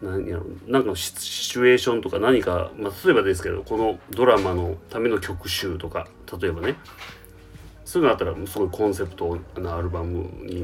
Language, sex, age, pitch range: Japanese, male, 30-49, 90-115 Hz